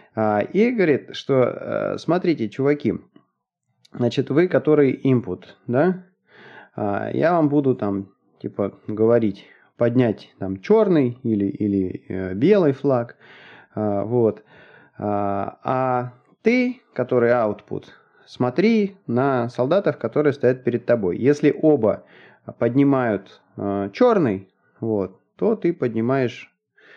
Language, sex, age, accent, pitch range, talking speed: Russian, male, 30-49, native, 110-150 Hz, 95 wpm